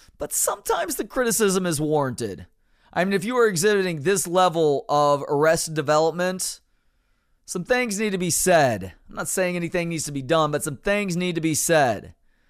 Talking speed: 185 wpm